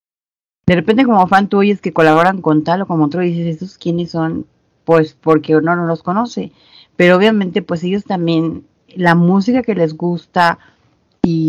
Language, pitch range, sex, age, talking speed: Spanish, 160-195 Hz, female, 40-59, 180 wpm